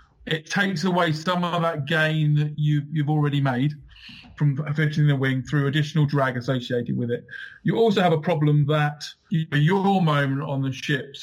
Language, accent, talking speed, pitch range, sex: English, British, 185 wpm, 140-170 Hz, male